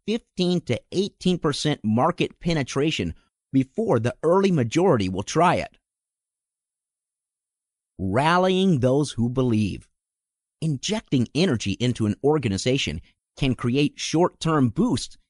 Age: 50-69